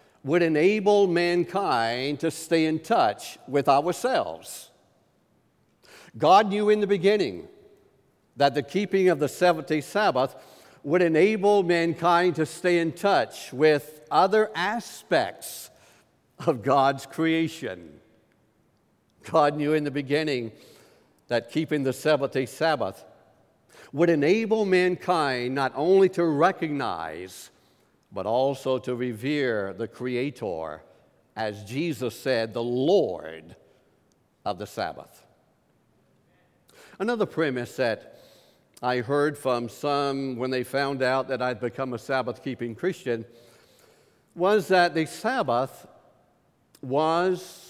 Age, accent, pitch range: 60-79, American, 130-175 Hz